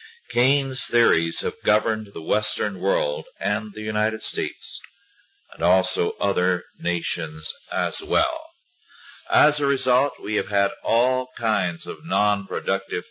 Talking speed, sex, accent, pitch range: 125 wpm, male, American, 95-165 Hz